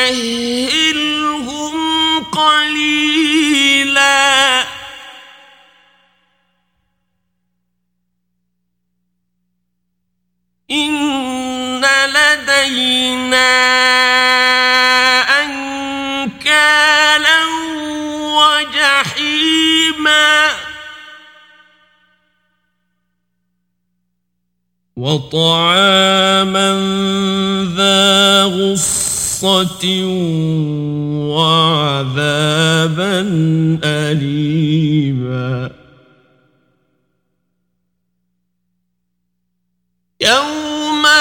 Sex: male